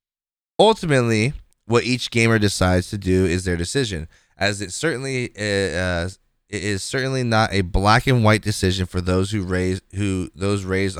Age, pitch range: 20-39, 95-115 Hz